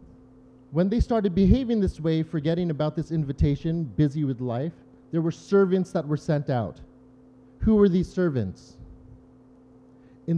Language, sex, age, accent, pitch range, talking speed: English, male, 30-49, American, 130-190 Hz, 145 wpm